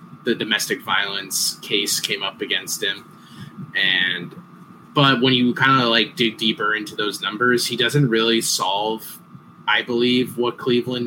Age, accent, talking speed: 20-39, American, 150 wpm